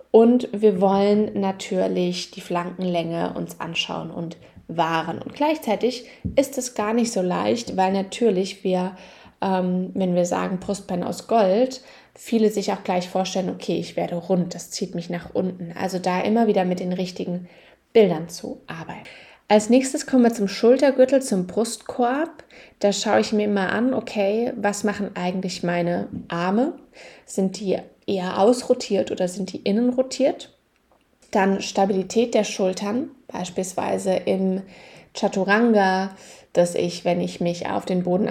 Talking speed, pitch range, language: 150 wpm, 180-220 Hz, German